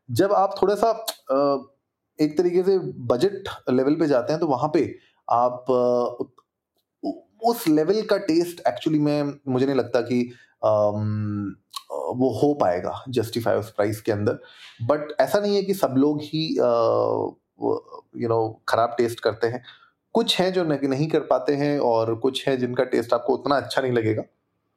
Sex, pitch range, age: male, 110-150 Hz, 30-49